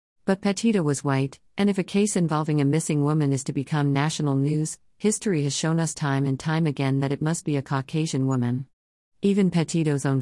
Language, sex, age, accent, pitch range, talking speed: English, female, 50-69, American, 130-155 Hz, 205 wpm